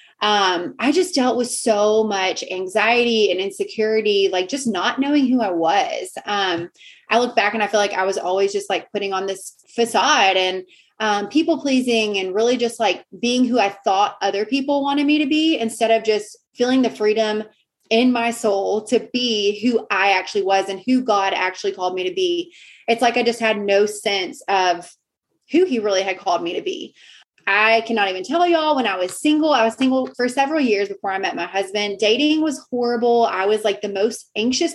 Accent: American